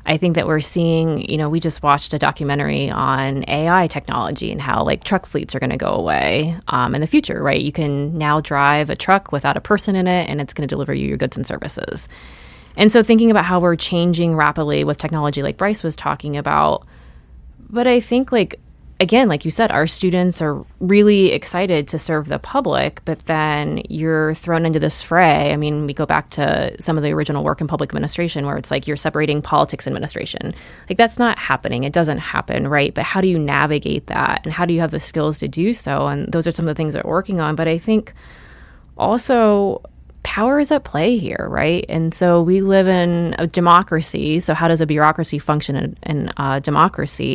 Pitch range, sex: 145-180 Hz, female